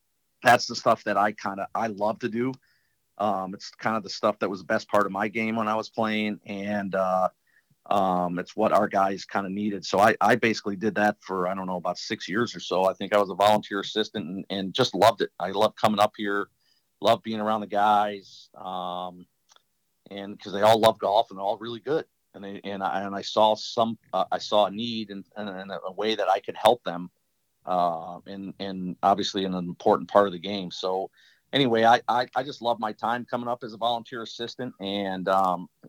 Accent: American